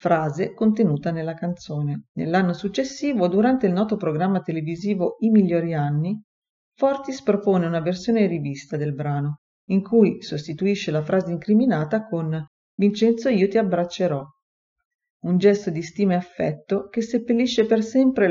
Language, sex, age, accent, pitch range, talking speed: Italian, female, 40-59, native, 165-215 Hz, 140 wpm